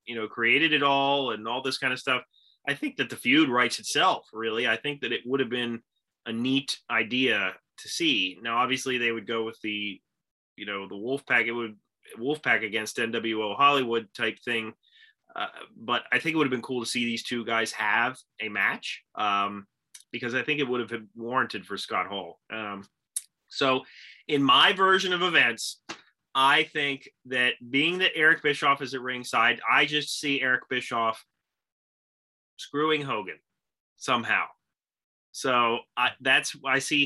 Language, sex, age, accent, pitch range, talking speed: English, male, 30-49, American, 115-145 Hz, 180 wpm